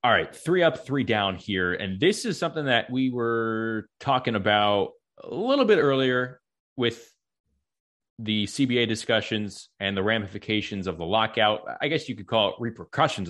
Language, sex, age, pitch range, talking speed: English, male, 30-49, 100-130 Hz, 165 wpm